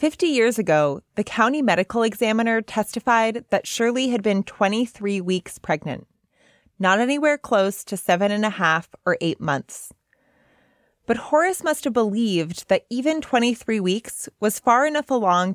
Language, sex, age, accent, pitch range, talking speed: English, female, 20-39, American, 180-250 Hz, 150 wpm